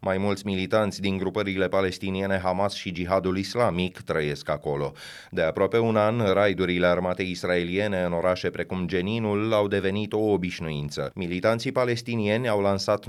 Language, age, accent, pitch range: Romanian, 30-49, native, 90-110 Hz